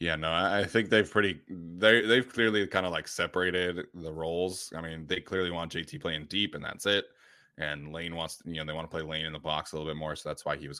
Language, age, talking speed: English, 20-39, 280 wpm